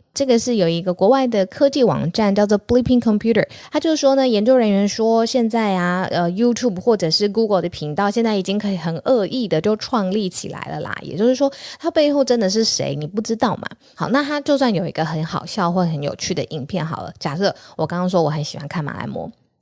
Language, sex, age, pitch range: Chinese, female, 20-39, 165-225 Hz